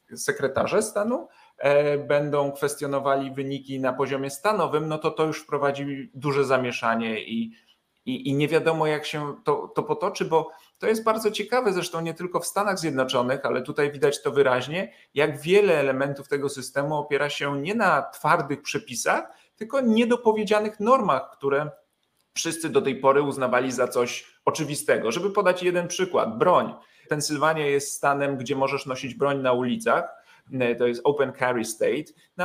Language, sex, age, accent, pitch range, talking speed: Polish, male, 40-59, native, 135-185 Hz, 155 wpm